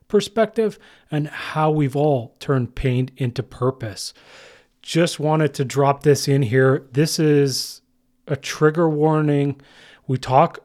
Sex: male